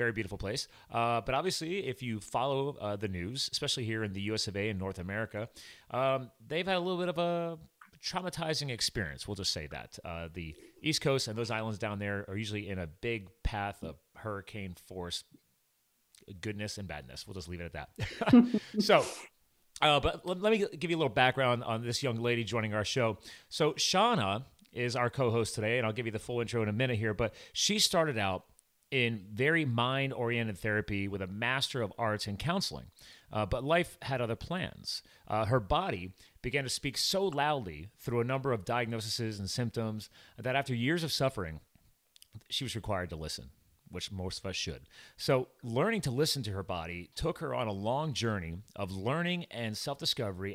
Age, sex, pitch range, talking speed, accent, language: 30-49, male, 100-135 Hz, 200 wpm, American, English